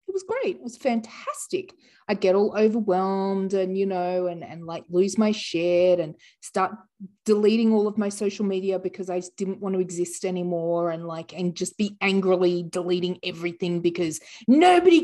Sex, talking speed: female, 175 wpm